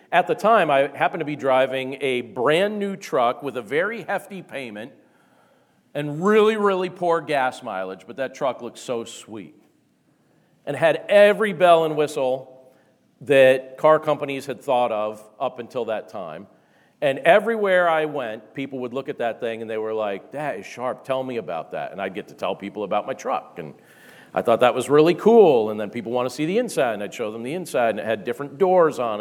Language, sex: English, male